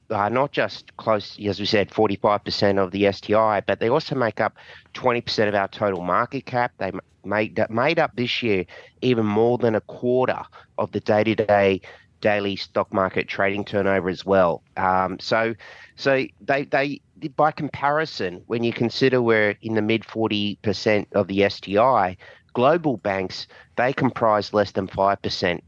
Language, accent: English, Australian